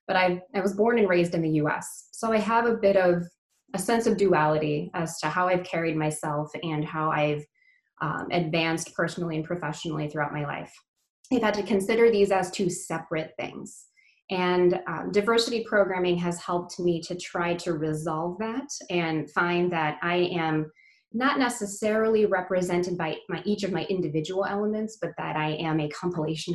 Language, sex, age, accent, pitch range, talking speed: English, female, 20-39, American, 165-210 Hz, 175 wpm